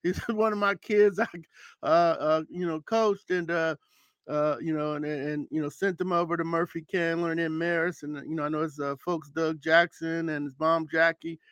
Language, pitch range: English, 150-200 Hz